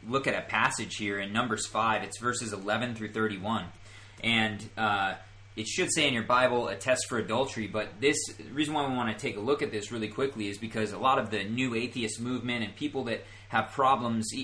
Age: 30-49